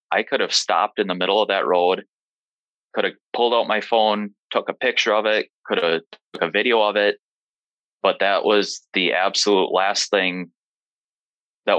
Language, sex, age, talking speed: English, male, 20-39, 180 wpm